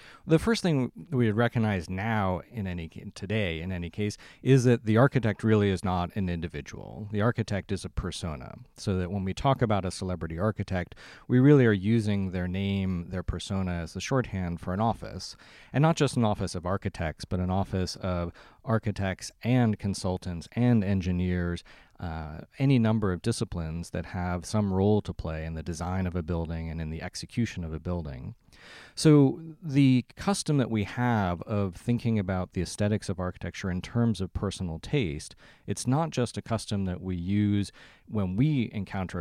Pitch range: 90-110 Hz